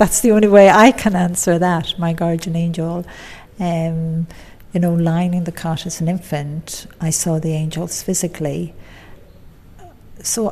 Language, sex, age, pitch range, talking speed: Finnish, female, 60-79, 105-175 Hz, 155 wpm